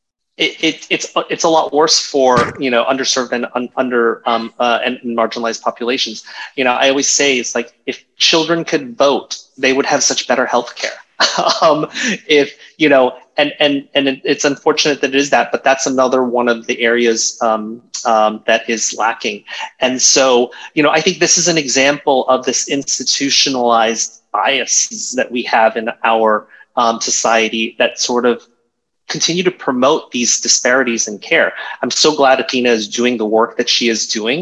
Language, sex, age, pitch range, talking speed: English, male, 30-49, 115-140 Hz, 185 wpm